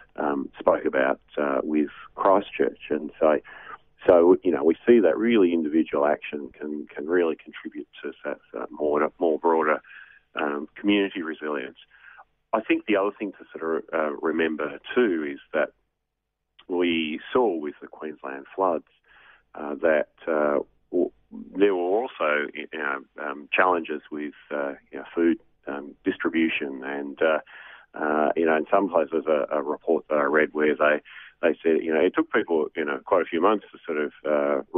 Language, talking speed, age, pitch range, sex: English, 170 wpm, 40-59, 70-80 Hz, male